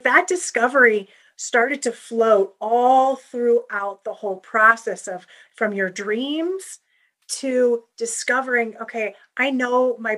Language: English